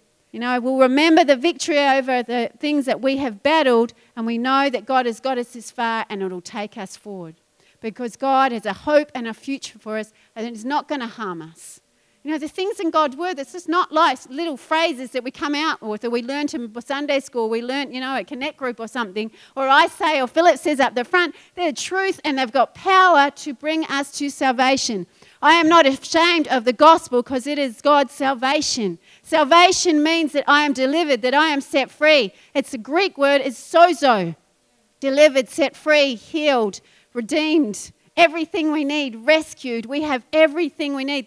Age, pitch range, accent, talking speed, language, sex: 40-59, 245-310 Hz, Australian, 205 wpm, English, female